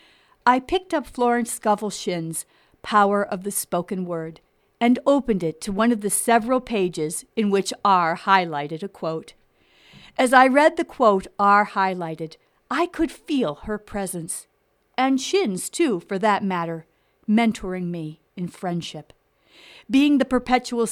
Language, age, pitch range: English, 50-69, 165-240 Hz